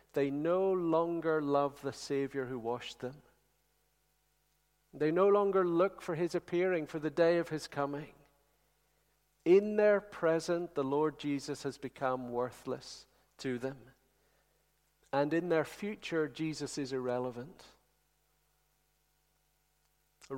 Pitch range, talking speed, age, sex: 140-175 Hz, 120 wpm, 50-69, male